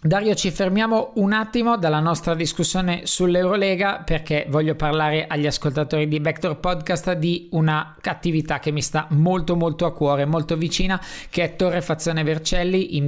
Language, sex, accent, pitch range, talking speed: Italian, male, native, 145-170 Hz, 155 wpm